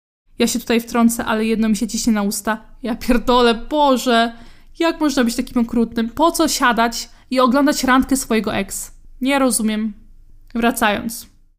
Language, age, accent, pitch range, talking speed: Polish, 20-39, native, 225-275 Hz, 155 wpm